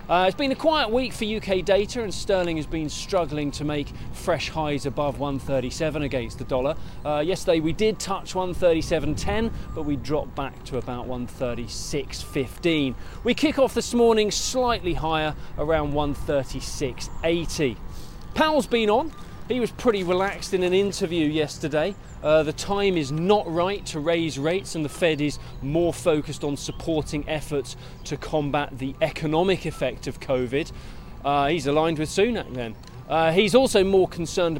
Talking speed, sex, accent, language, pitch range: 160 wpm, male, British, English, 145-195 Hz